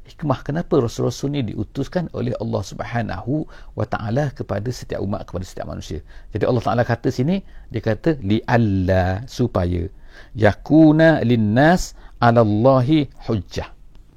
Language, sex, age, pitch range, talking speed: English, male, 50-69, 100-130 Hz, 125 wpm